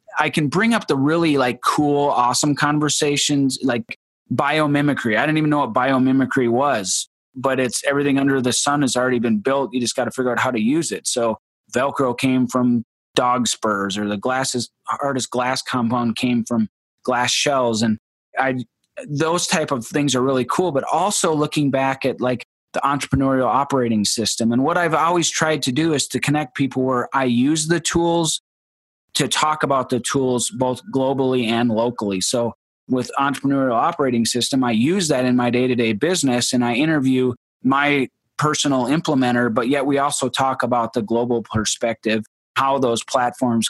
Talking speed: 175 wpm